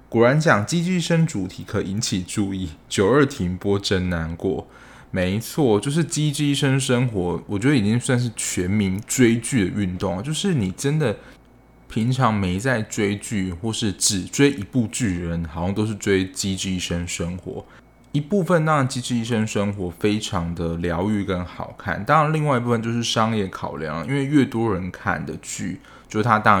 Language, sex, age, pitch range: Chinese, male, 20-39, 95-130 Hz